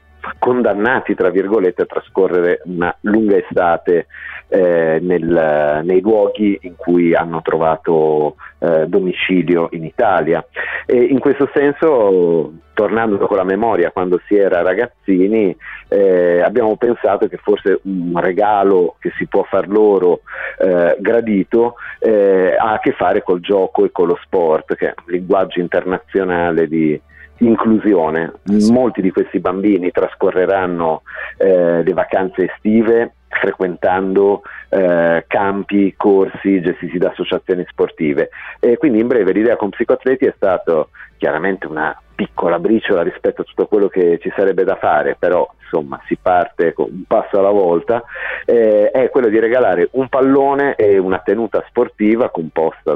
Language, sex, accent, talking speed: Italian, male, native, 140 wpm